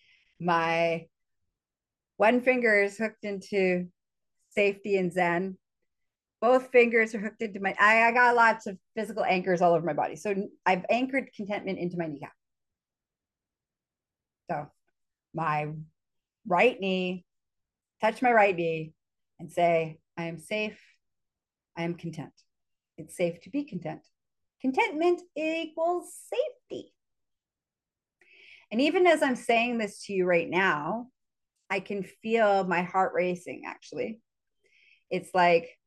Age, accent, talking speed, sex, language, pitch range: 30-49, American, 125 wpm, female, English, 165-220 Hz